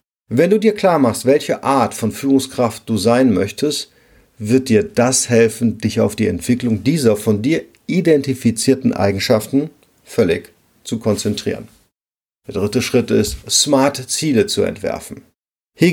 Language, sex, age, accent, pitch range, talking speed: German, male, 40-59, German, 110-135 Hz, 140 wpm